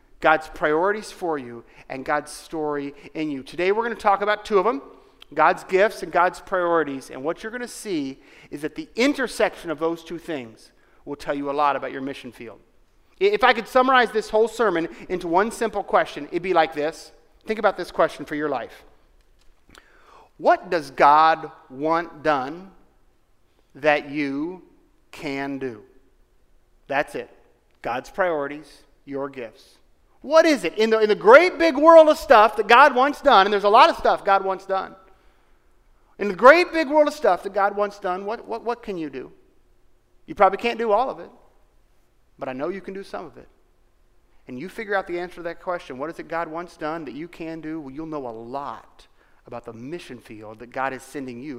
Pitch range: 145-220 Hz